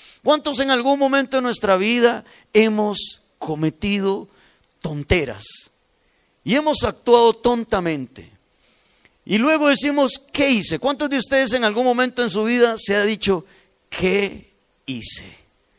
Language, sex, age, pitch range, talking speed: Spanish, male, 50-69, 195-280 Hz, 125 wpm